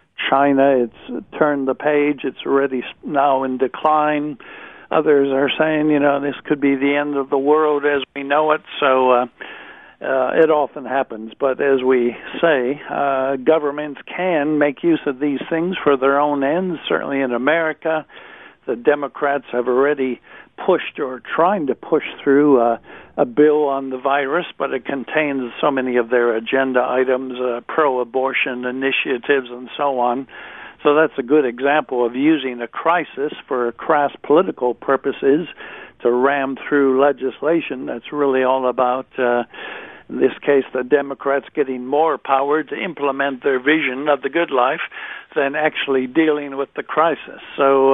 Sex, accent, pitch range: male, American, 130-150 Hz